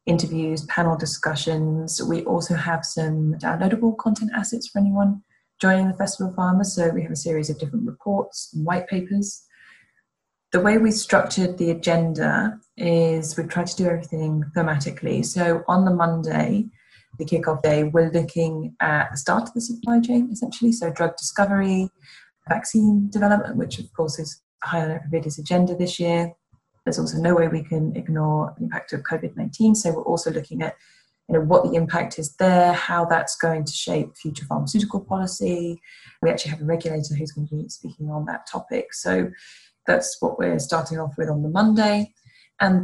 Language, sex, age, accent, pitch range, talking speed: English, female, 20-39, British, 160-195 Hz, 175 wpm